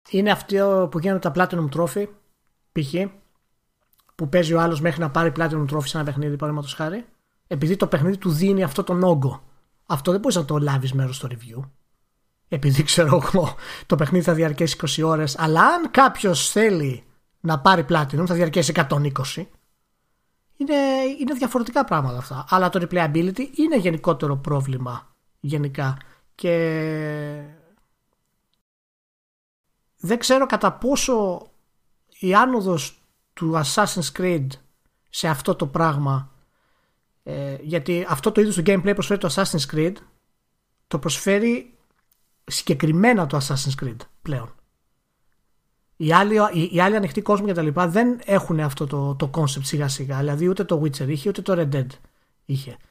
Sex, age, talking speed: male, 30-49, 145 wpm